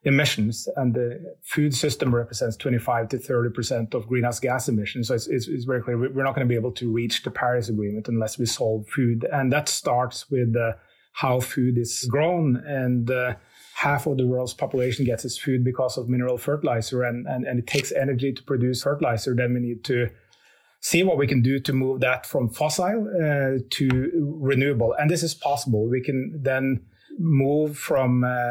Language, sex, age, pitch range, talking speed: English, male, 30-49, 120-140 Hz, 195 wpm